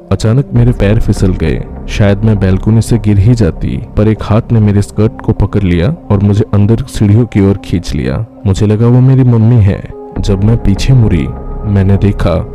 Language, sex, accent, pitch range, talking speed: Hindi, male, native, 100-115 Hz, 195 wpm